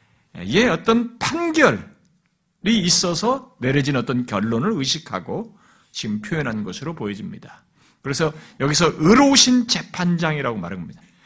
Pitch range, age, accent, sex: 145-220 Hz, 50-69, native, male